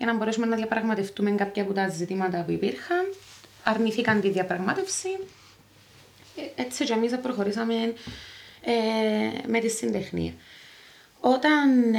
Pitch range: 190-250 Hz